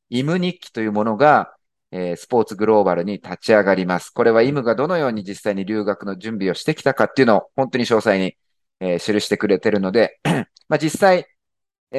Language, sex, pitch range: Japanese, male, 100-150 Hz